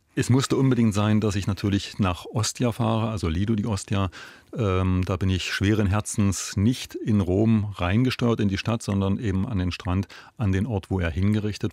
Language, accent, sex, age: German, German, male, 30-49